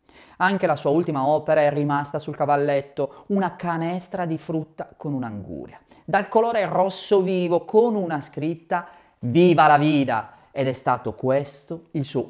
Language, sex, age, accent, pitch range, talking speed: Italian, male, 30-49, native, 130-180 Hz, 150 wpm